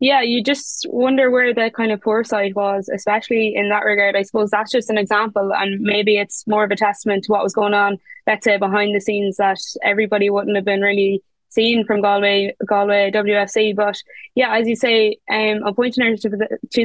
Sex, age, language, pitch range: female, 10-29, English, 200-225 Hz